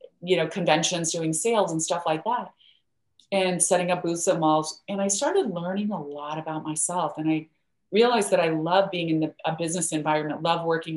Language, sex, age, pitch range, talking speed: English, female, 30-49, 160-195 Hz, 200 wpm